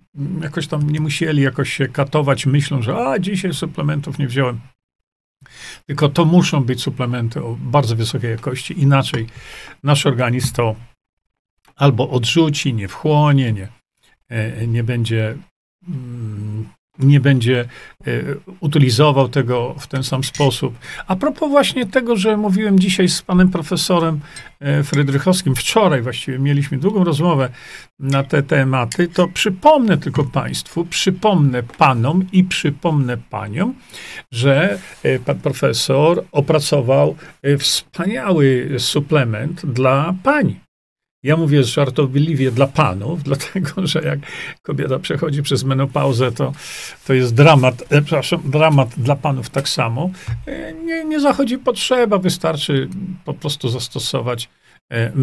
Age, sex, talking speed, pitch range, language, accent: 40-59, male, 125 wpm, 130-165 Hz, Polish, native